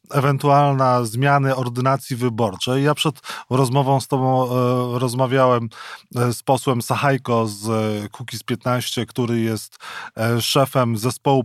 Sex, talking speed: male, 105 wpm